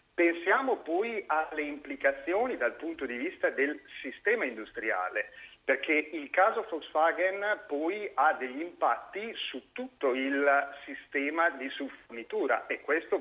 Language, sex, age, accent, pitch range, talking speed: Italian, male, 50-69, native, 135-225 Hz, 125 wpm